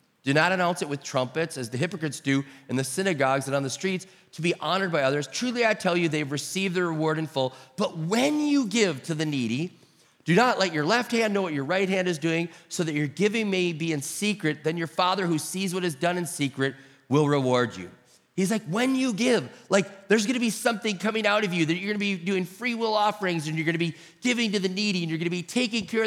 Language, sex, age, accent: English, male, 30-49, American